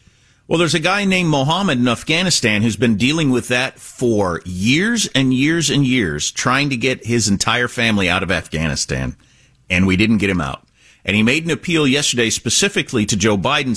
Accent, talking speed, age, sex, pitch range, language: American, 190 wpm, 50-69, male, 115-170 Hz, English